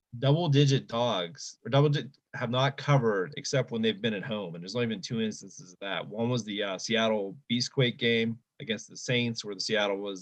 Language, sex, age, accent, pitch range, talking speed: English, male, 20-39, American, 100-130 Hz, 215 wpm